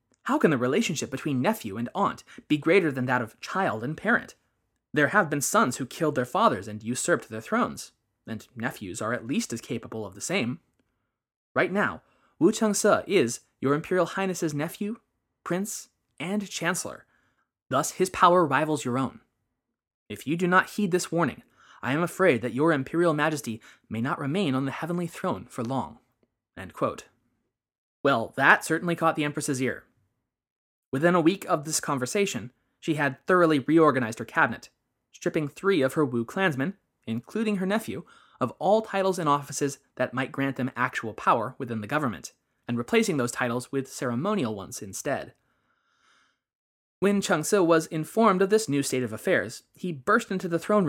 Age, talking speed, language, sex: 20-39, 175 wpm, English, male